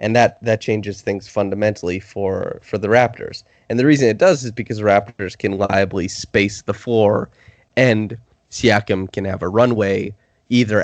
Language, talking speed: English, 170 wpm